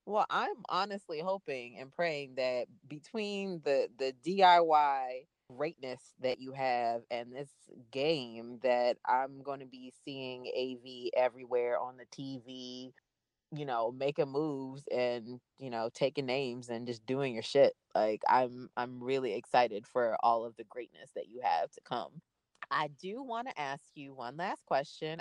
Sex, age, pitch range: female, 20-39, 125-150 Hz